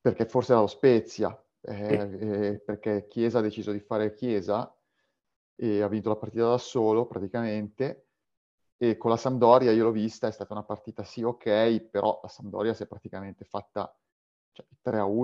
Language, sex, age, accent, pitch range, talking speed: Italian, male, 30-49, native, 105-125 Hz, 170 wpm